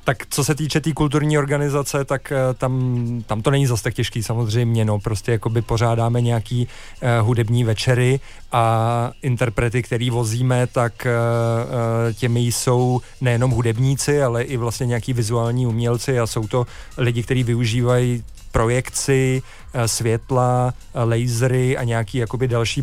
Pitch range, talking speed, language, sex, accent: 120-130 Hz, 145 wpm, Czech, male, native